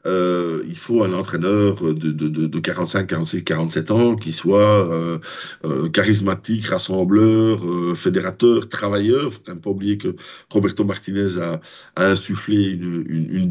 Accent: French